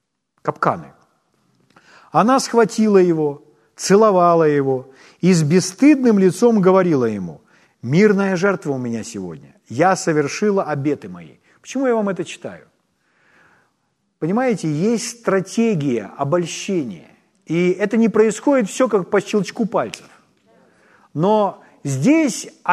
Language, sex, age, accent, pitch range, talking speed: Ukrainian, male, 40-59, native, 165-210 Hz, 110 wpm